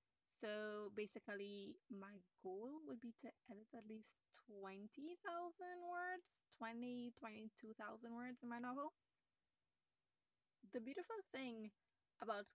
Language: English